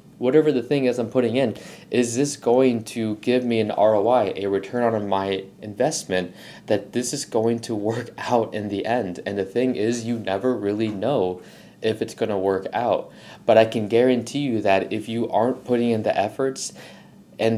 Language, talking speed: English, 200 wpm